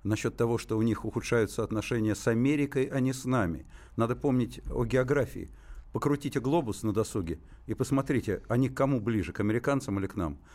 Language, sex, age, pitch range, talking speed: Russian, male, 60-79, 110-140 Hz, 180 wpm